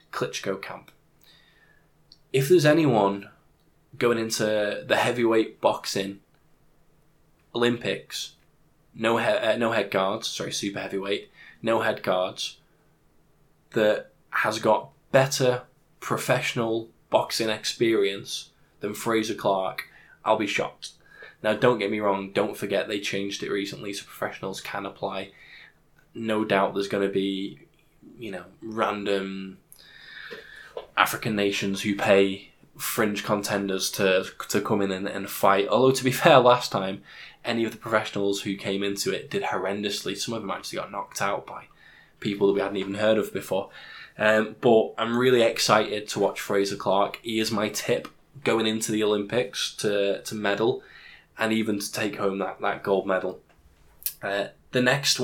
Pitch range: 100-120 Hz